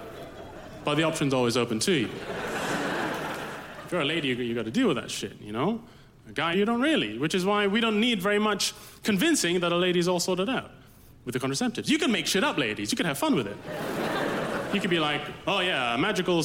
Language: English